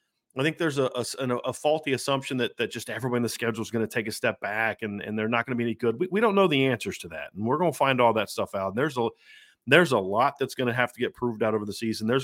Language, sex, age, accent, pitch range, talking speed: English, male, 40-59, American, 110-135 Hz, 325 wpm